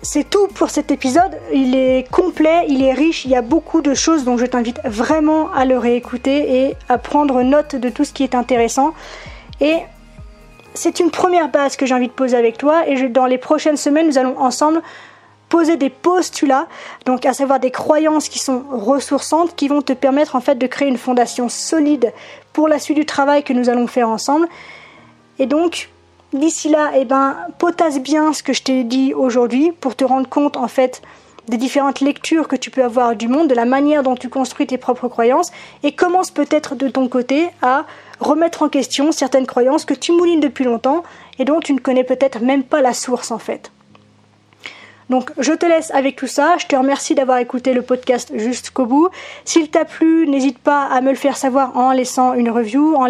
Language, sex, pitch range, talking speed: French, female, 255-300 Hz, 205 wpm